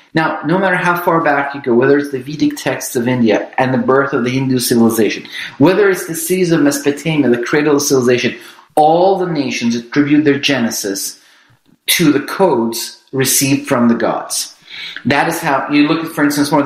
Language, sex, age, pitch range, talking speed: English, male, 40-59, 130-160 Hz, 200 wpm